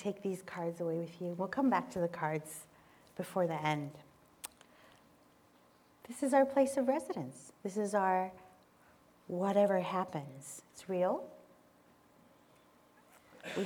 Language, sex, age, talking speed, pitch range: English, female, 40-59, 125 wpm, 175-240 Hz